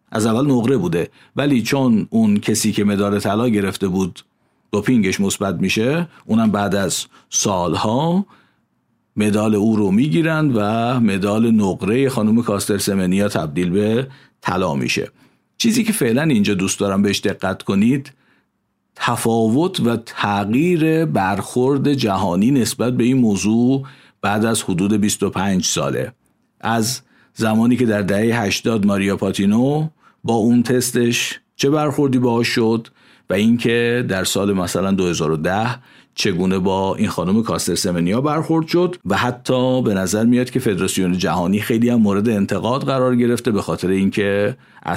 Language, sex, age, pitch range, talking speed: Persian, male, 50-69, 100-130 Hz, 135 wpm